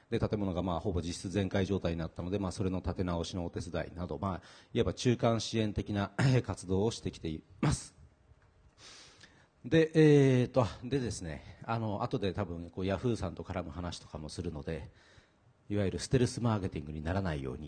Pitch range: 90-120 Hz